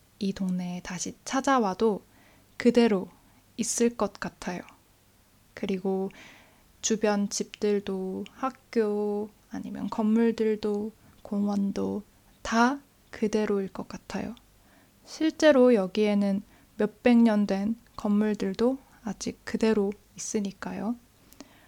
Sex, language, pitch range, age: female, Korean, 195-230 Hz, 20-39